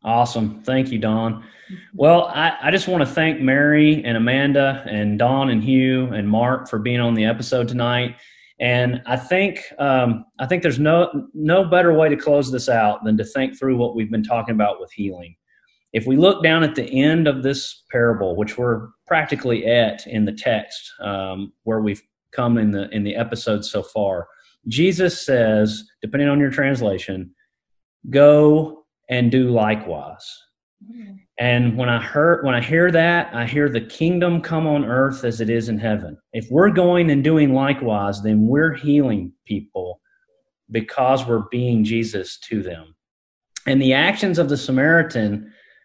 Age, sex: 30-49, male